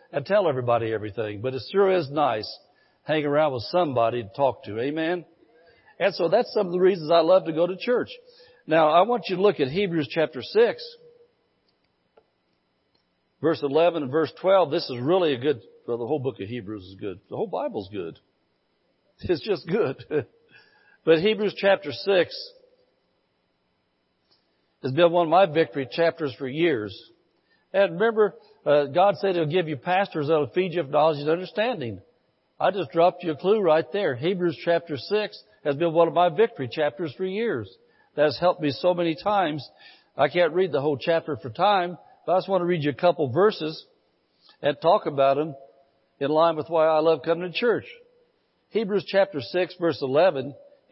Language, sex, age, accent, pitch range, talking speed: English, male, 60-79, American, 140-190 Hz, 185 wpm